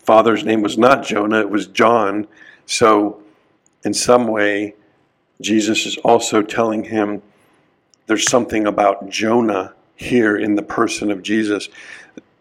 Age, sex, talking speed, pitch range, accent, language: 50-69, male, 130 wpm, 105-125 Hz, American, English